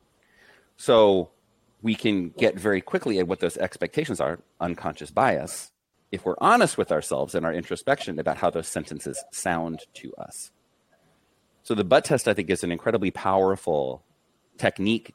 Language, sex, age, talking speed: English, male, 30-49, 155 wpm